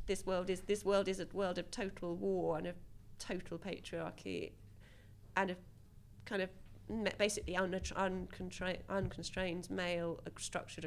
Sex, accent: female, British